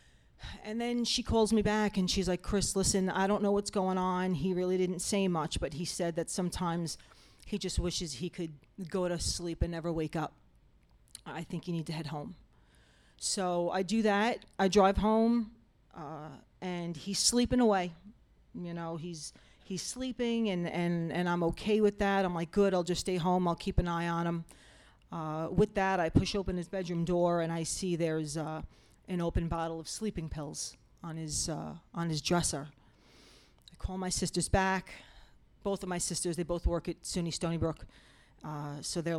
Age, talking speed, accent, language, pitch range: 40-59, 195 wpm, American, English, 165-190 Hz